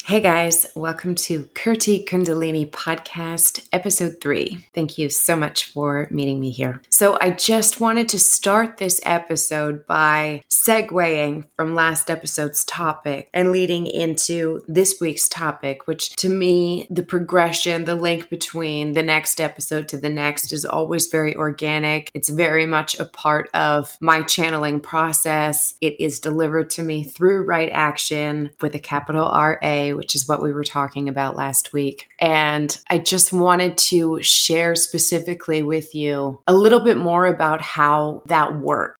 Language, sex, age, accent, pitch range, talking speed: English, female, 20-39, American, 150-180 Hz, 155 wpm